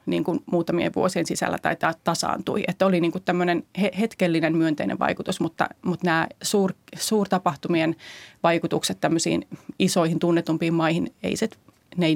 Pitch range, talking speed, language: 170-185 Hz, 130 wpm, Finnish